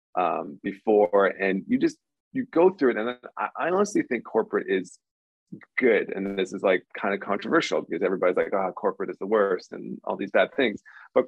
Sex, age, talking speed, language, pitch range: male, 20-39, 205 wpm, English, 95-140 Hz